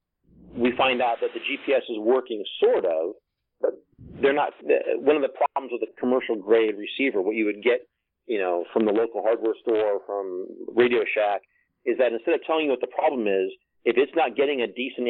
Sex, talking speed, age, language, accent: male, 210 wpm, 40-59, English, American